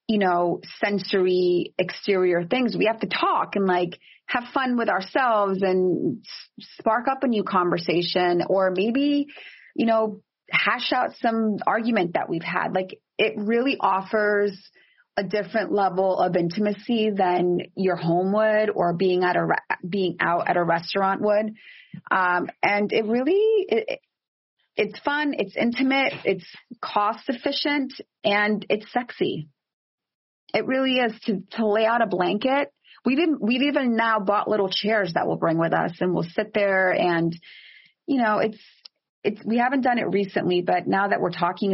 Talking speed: 165 wpm